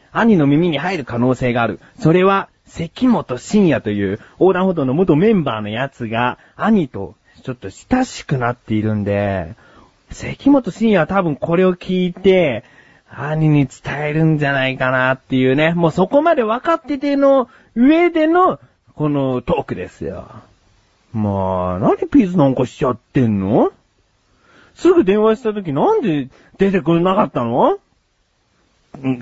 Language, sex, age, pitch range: Japanese, male, 30-49, 120-195 Hz